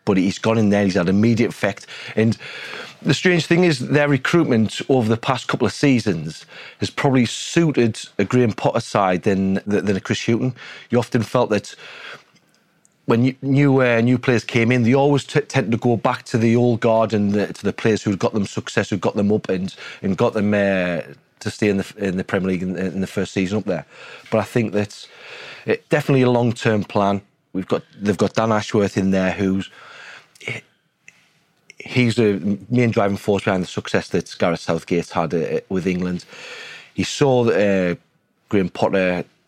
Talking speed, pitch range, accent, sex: 195 wpm, 95-120 Hz, British, male